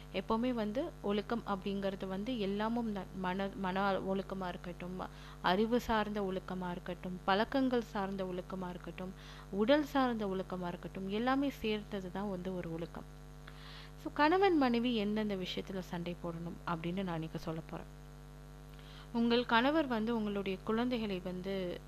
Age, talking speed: 30-49, 125 wpm